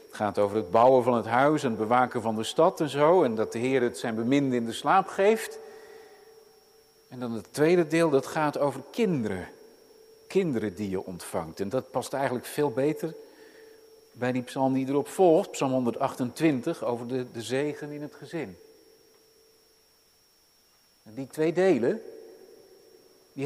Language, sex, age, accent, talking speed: Dutch, male, 50-69, Dutch, 165 wpm